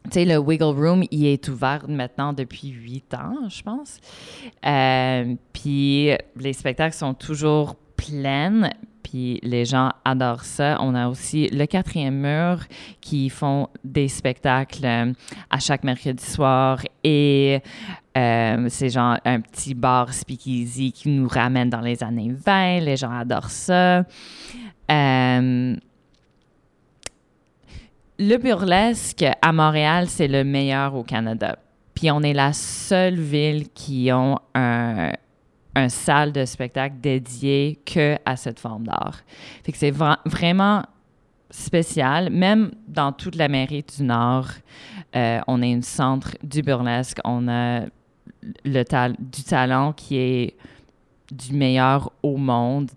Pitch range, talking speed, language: 125-150 Hz, 135 wpm, French